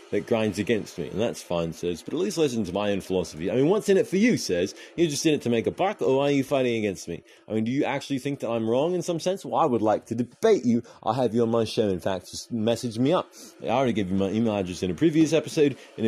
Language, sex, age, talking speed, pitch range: English, male, 30-49, 300 wpm, 115-165 Hz